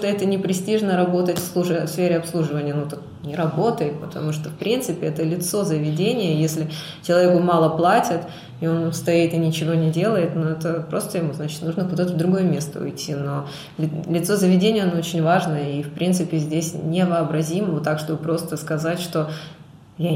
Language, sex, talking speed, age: Russian, female, 175 wpm, 20-39